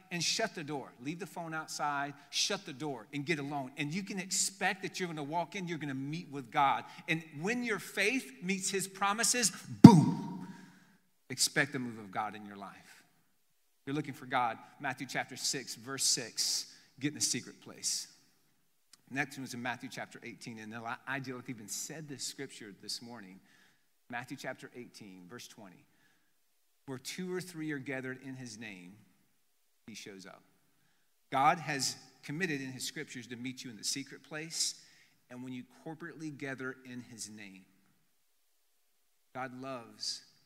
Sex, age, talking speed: male, 40-59, 170 wpm